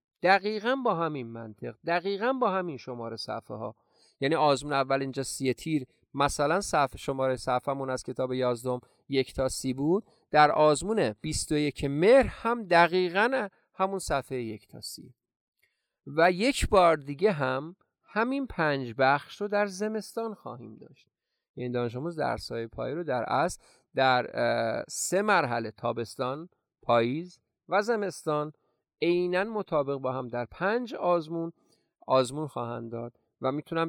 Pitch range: 125-175 Hz